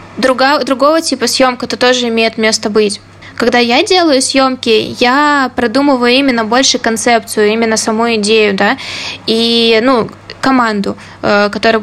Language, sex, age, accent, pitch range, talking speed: Russian, female, 20-39, native, 230-275 Hz, 130 wpm